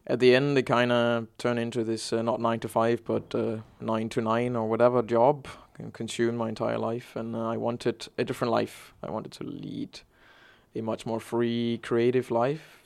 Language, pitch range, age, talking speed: English, 115-125 Hz, 20-39, 190 wpm